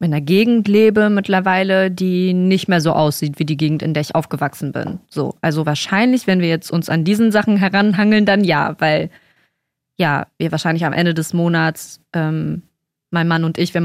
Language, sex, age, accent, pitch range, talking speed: German, female, 20-39, German, 170-235 Hz, 195 wpm